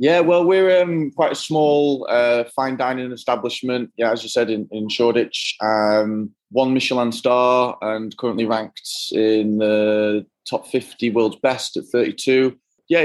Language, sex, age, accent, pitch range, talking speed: English, male, 20-39, British, 95-115 Hz, 155 wpm